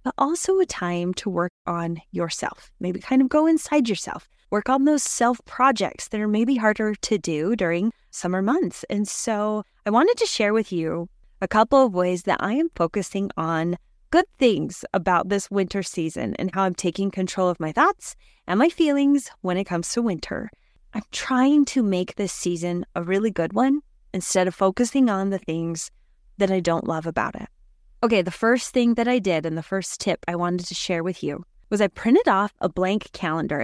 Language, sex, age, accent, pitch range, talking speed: English, female, 20-39, American, 175-235 Hz, 200 wpm